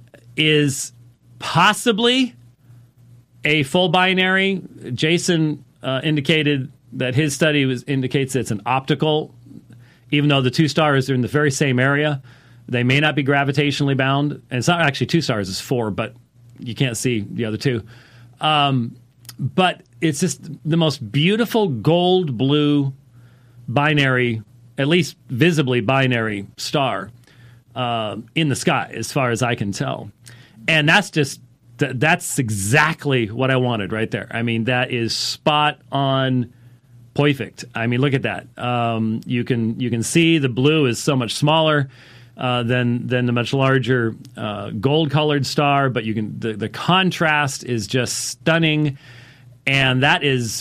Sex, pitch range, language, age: male, 120-155 Hz, English, 40-59